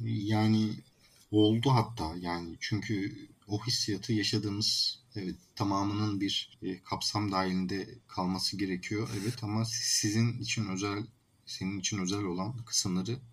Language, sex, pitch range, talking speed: Turkish, male, 95-125 Hz, 110 wpm